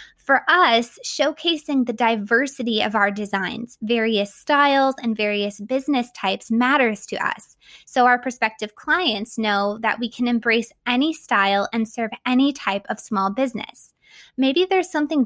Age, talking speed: 20-39, 150 wpm